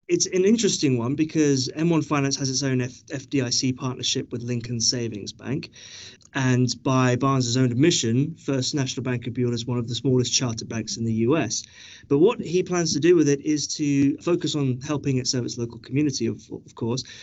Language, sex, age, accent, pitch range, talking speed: English, male, 30-49, British, 120-145 Hz, 200 wpm